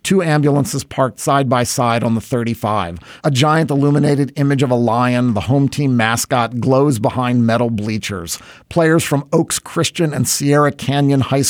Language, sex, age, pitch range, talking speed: English, male, 40-59, 115-145 Hz, 160 wpm